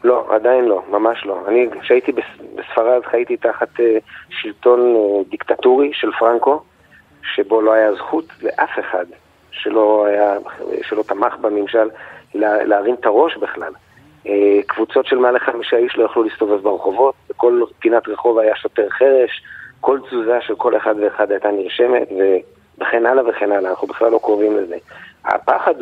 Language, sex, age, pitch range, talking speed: Hebrew, male, 40-59, 110-165 Hz, 145 wpm